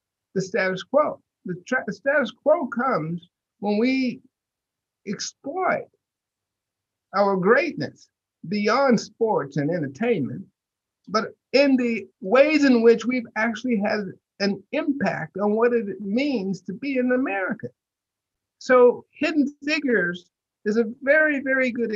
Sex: male